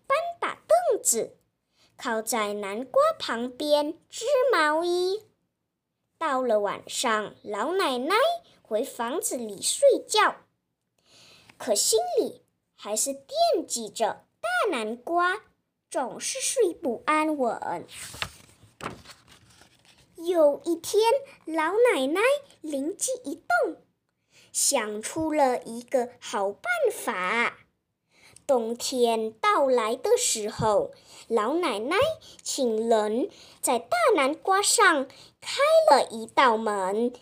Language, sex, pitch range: Chinese, male, 230-385 Hz